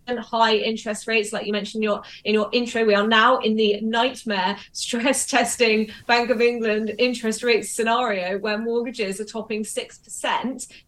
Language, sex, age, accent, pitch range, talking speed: English, female, 20-39, British, 205-235 Hz, 165 wpm